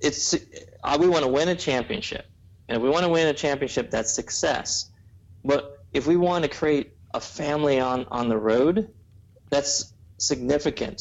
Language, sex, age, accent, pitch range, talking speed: English, male, 30-49, American, 110-145 Hz, 170 wpm